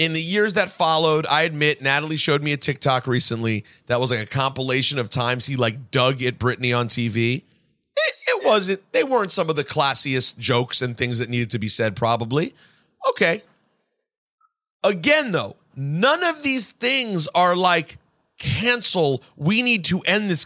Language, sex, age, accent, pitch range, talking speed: English, male, 40-59, American, 135-200 Hz, 175 wpm